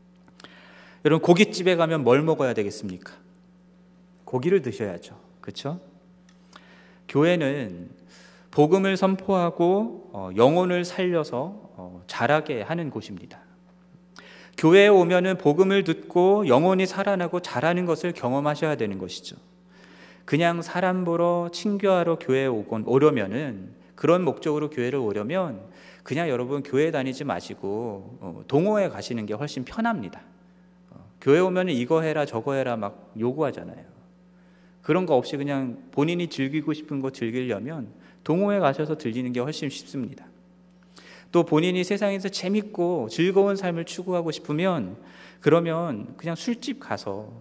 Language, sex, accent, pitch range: Korean, male, native, 135-180 Hz